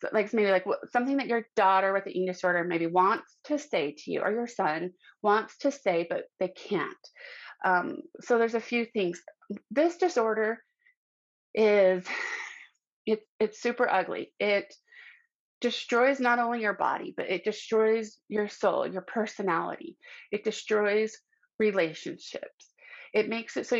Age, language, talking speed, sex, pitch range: 30-49, English, 150 wpm, female, 195-250 Hz